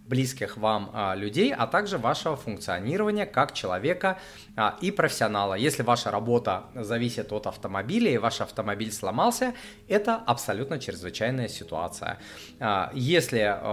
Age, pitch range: 30-49, 105-135 Hz